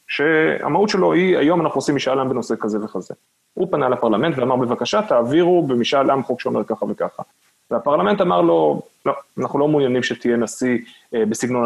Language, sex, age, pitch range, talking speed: Hebrew, male, 30-49, 115-165 Hz, 170 wpm